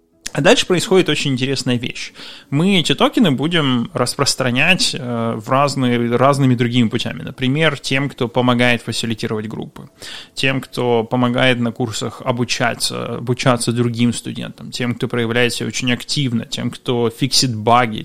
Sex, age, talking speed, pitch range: male, 20-39, 135 wpm, 120-145 Hz